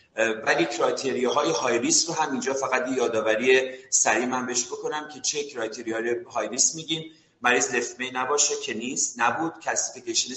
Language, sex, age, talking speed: Persian, male, 40-59, 140 wpm